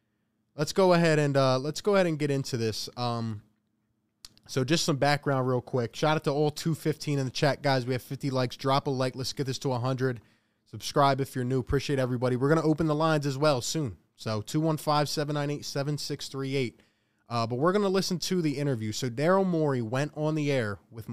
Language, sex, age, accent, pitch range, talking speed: English, male, 20-39, American, 115-160 Hz, 210 wpm